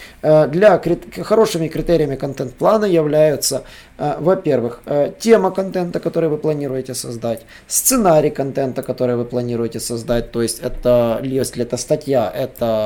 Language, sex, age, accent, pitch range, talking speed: Russian, male, 20-39, native, 125-165 Hz, 115 wpm